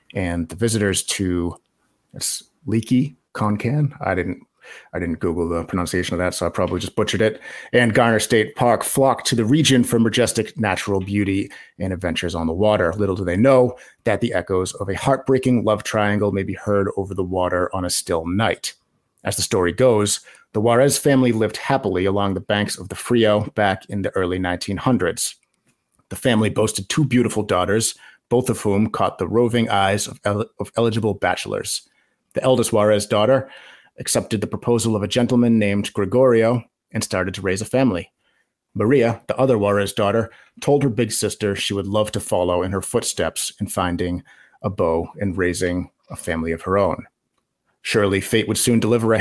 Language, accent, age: English, American, 30-49